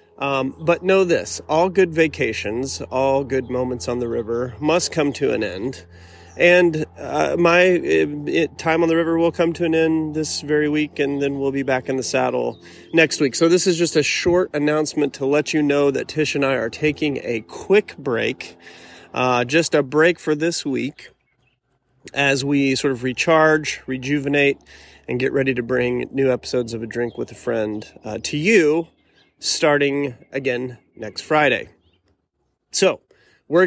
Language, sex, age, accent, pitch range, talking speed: English, male, 30-49, American, 125-160 Hz, 180 wpm